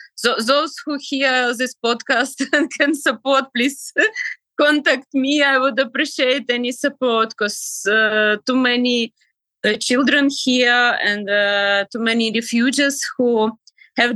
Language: English